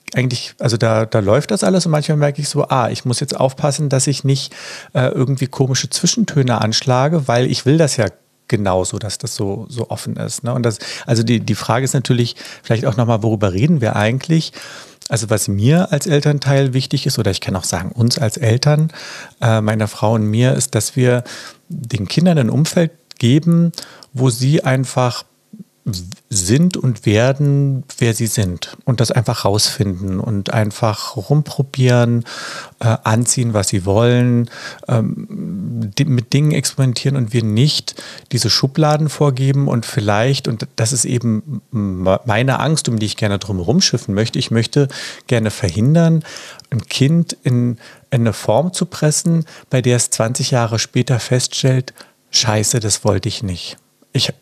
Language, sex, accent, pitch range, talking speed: German, male, German, 110-140 Hz, 165 wpm